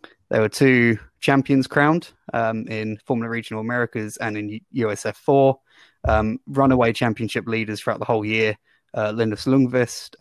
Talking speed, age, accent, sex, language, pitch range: 140 wpm, 20-39, British, male, English, 110-130 Hz